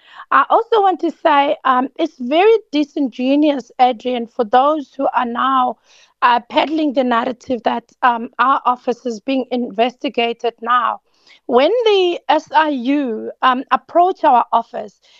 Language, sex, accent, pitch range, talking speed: English, female, South African, 245-310 Hz, 135 wpm